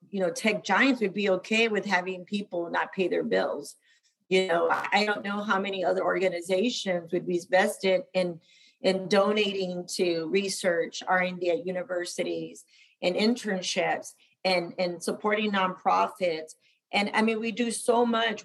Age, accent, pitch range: 40-59, American, 175-205 Hz